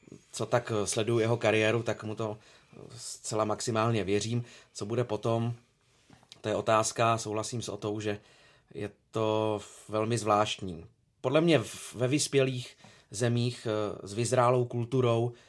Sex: male